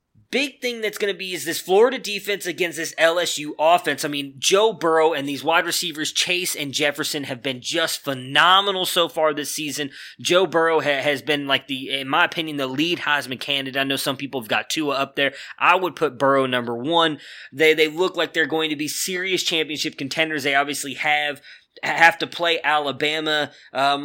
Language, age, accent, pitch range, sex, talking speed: English, 20-39, American, 140-170 Hz, male, 200 wpm